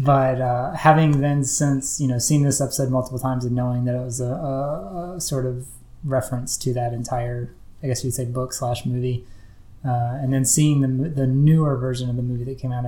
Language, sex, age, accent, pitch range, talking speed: English, male, 20-39, American, 125-145 Hz, 220 wpm